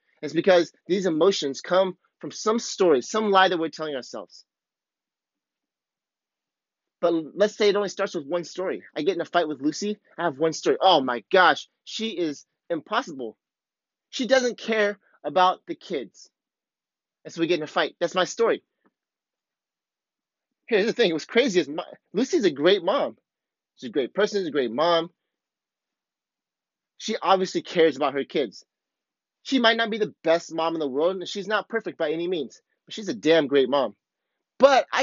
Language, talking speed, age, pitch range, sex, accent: English, 180 wpm, 30-49, 165-215 Hz, male, American